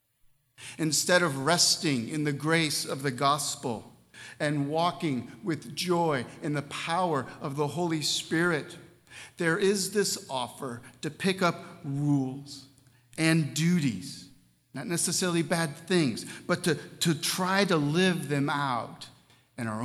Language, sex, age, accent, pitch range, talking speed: English, male, 50-69, American, 125-165 Hz, 135 wpm